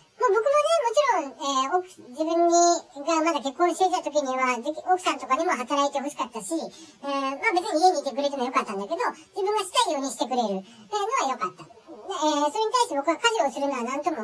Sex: male